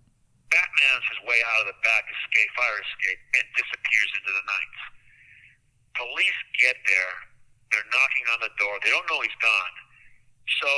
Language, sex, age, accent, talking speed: English, male, 50-69, American, 160 wpm